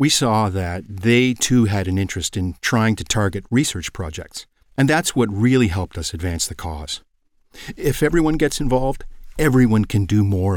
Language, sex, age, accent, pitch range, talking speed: English, male, 50-69, American, 90-125 Hz, 175 wpm